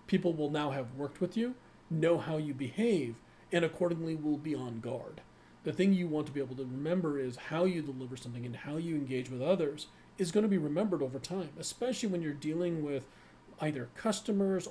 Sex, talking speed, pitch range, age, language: male, 210 wpm, 140-180 Hz, 40-59, English